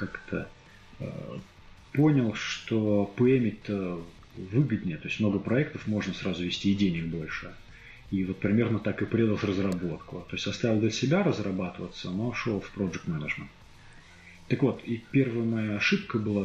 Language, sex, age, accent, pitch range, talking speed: Russian, male, 30-49, native, 95-120 Hz, 150 wpm